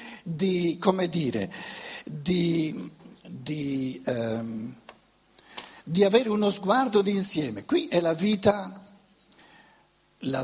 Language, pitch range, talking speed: Italian, 165-220 Hz, 90 wpm